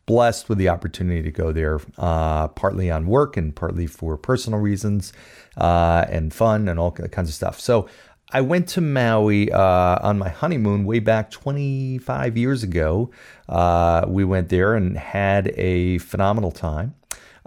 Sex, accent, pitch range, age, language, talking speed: male, American, 90-120 Hz, 40-59, English, 160 wpm